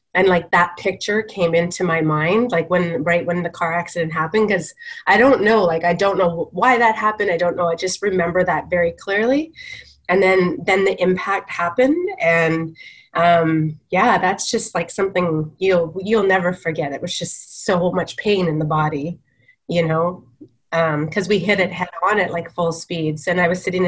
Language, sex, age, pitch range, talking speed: English, female, 30-49, 175-200 Hz, 200 wpm